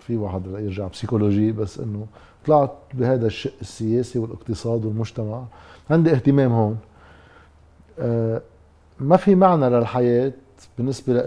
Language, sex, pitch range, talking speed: Arabic, male, 110-135 Hz, 115 wpm